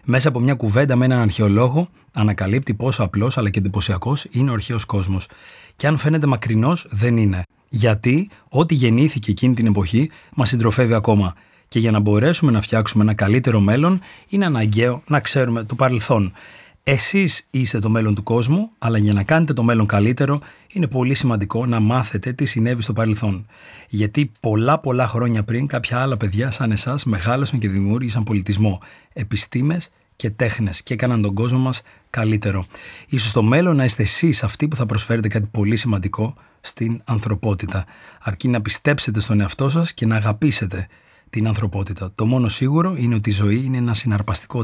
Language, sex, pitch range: Greek, male, 105-130 Hz